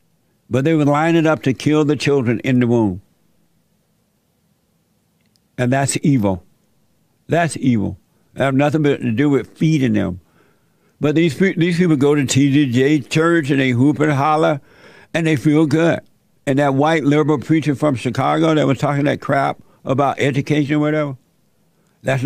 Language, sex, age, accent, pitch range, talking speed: English, male, 60-79, American, 130-155 Hz, 165 wpm